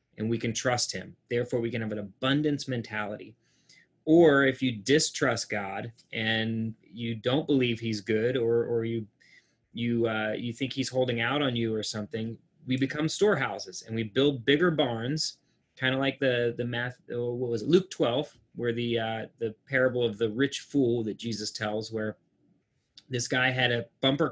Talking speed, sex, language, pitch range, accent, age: 185 wpm, male, English, 115-140 Hz, American, 30-49